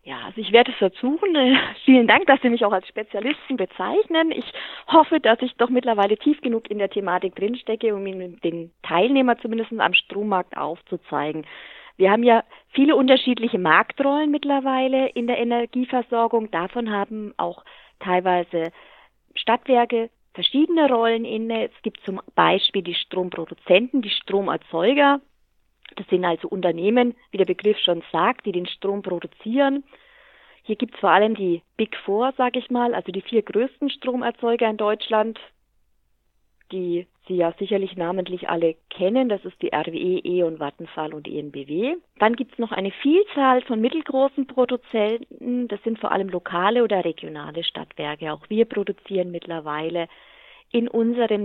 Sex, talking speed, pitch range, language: female, 155 wpm, 185-250 Hz, German